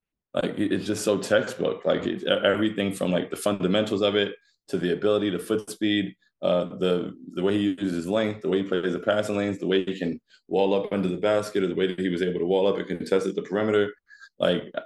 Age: 20-39